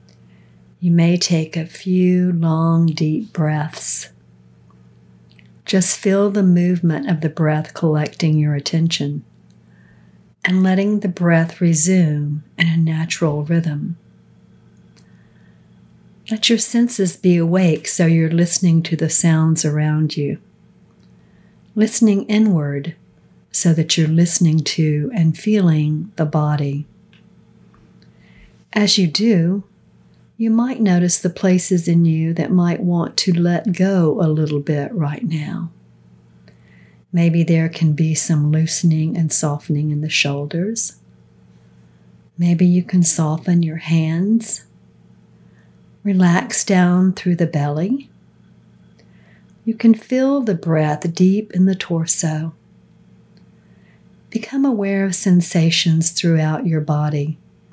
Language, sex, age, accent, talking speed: English, female, 60-79, American, 115 wpm